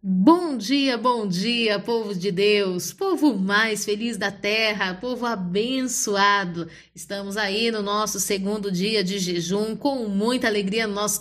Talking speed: 145 wpm